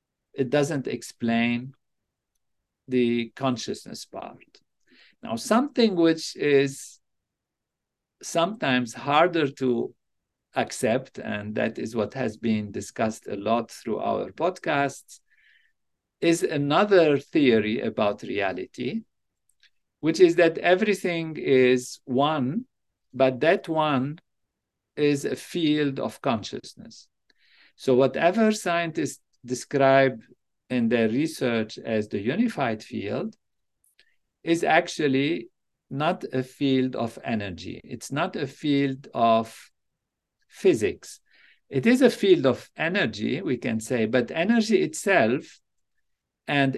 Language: English